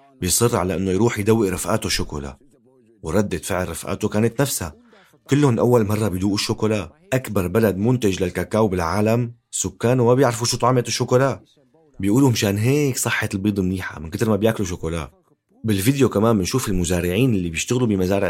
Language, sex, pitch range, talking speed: Arabic, male, 95-125 Hz, 150 wpm